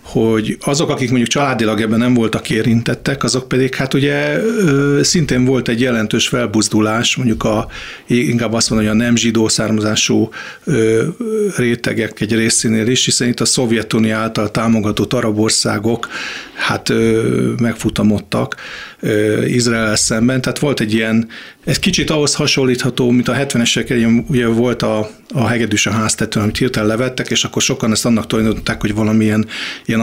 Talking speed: 150 wpm